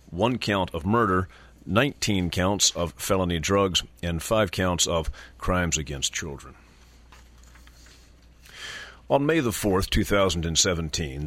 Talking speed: 110 wpm